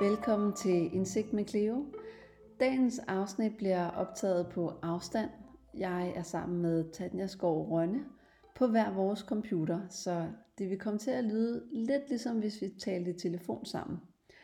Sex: female